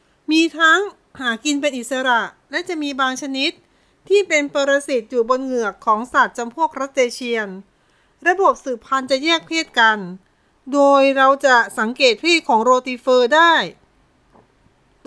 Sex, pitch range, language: female, 245-310 Hz, Thai